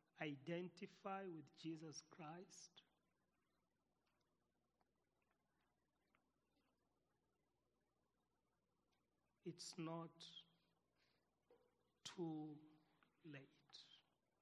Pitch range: 150-190 Hz